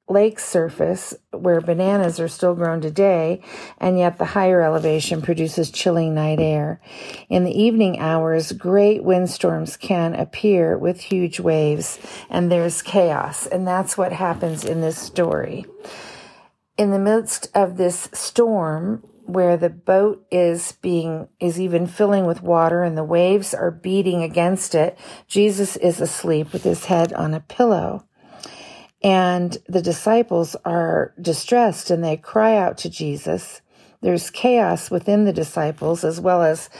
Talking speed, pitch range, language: 145 wpm, 165-195 Hz, English